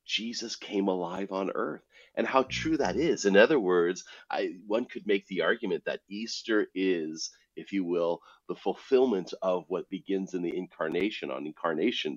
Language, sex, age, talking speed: English, male, 40-59, 170 wpm